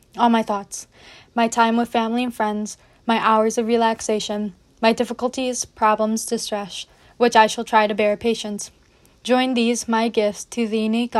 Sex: female